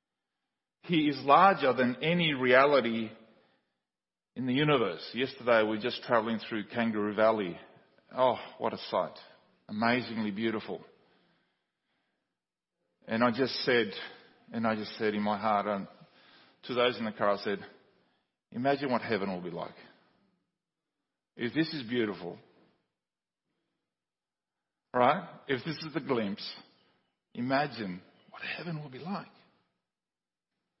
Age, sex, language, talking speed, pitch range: 40-59, male, English, 125 wpm, 120-205 Hz